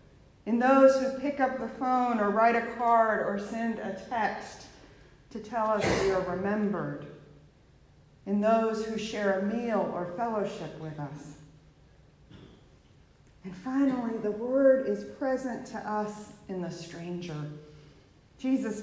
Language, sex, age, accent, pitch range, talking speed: English, female, 40-59, American, 195-255 Hz, 135 wpm